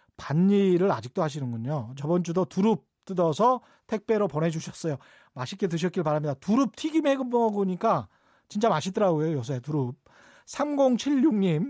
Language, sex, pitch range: Korean, male, 160-230 Hz